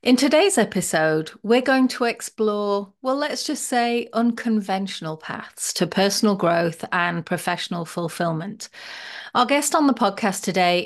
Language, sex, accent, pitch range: English, female, British, 180-235 Hz